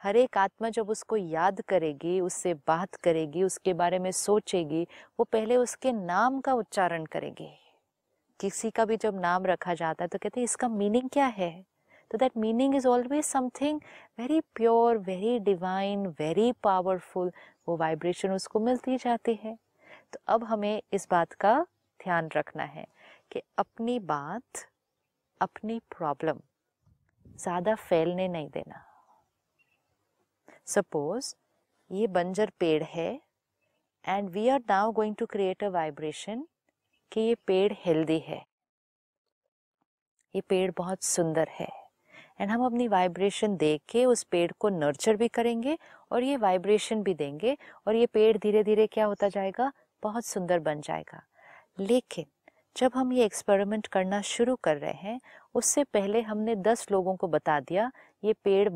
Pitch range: 180-230 Hz